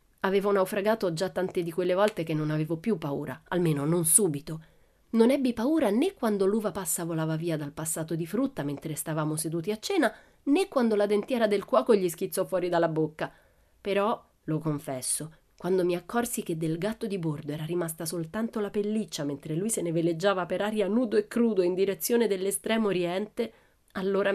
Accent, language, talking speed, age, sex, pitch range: native, Italian, 185 wpm, 30-49, female, 160-220 Hz